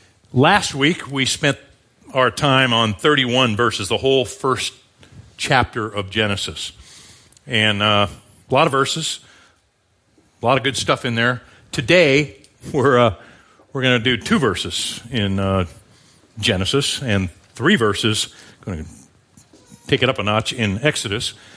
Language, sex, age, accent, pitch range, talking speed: English, male, 50-69, American, 100-125 Hz, 145 wpm